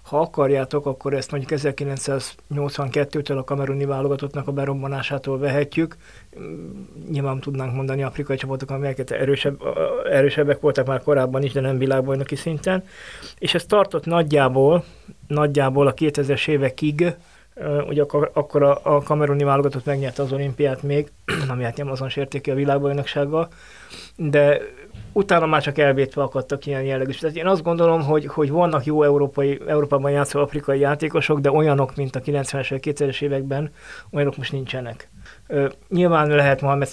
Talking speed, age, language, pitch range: 140 wpm, 20-39, Hungarian, 135-150 Hz